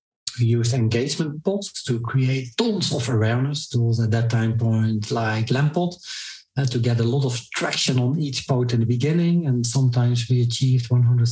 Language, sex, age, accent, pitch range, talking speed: English, male, 50-69, Dutch, 115-135 Hz, 170 wpm